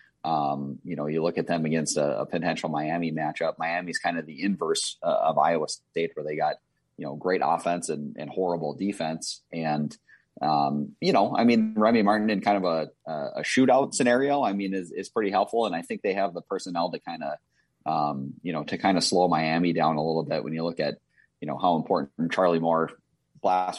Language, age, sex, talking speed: English, 30-49, male, 220 wpm